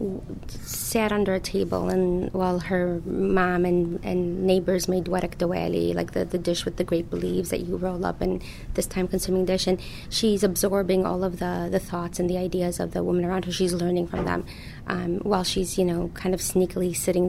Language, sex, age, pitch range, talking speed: English, female, 30-49, 175-190 Hz, 210 wpm